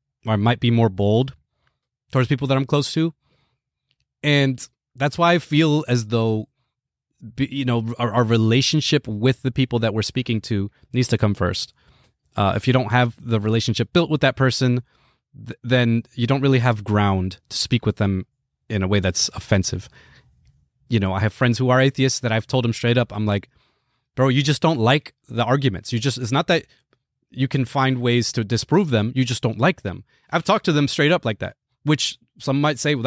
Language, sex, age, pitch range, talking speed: English, male, 30-49, 115-140 Hz, 205 wpm